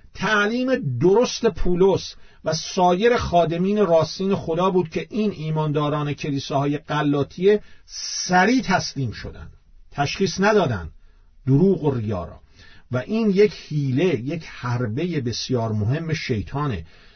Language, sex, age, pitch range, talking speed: Persian, male, 50-69, 115-165 Hz, 110 wpm